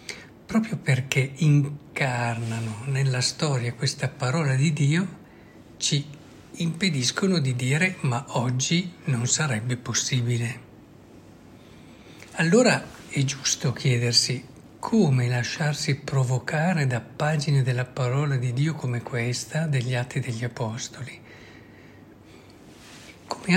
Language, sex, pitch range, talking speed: Italian, male, 120-150 Hz, 95 wpm